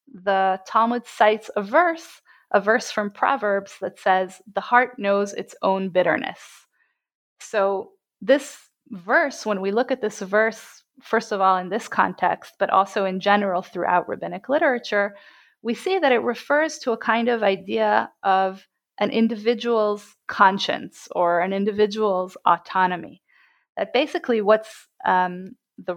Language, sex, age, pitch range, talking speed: English, female, 30-49, 195-235 Hz, 145 wpm